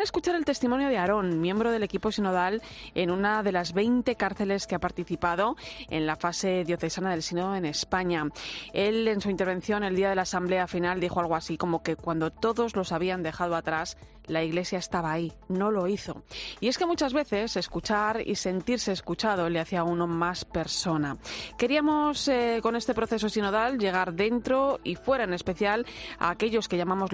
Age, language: 30-49, Spanish